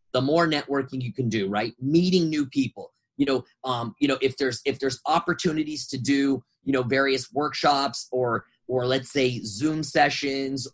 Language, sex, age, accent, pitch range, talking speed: English, male, 30-49, American, 130-160 Hz, 180 wpm